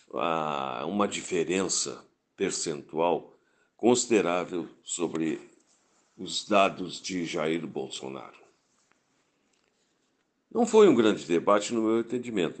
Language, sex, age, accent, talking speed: Portuguese, male, 60-79, Brazilian, 90 wpm